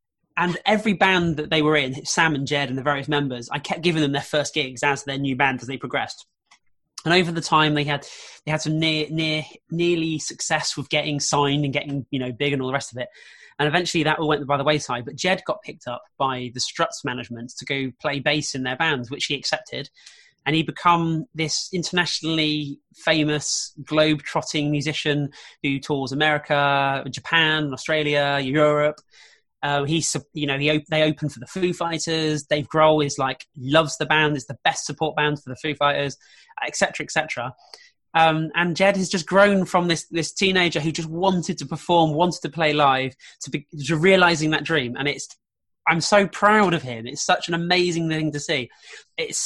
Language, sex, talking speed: English, male, 205 wpm